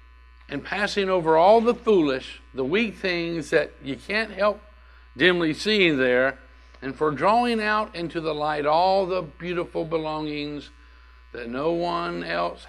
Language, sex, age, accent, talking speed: English, male, 60-79, American, 145 wpm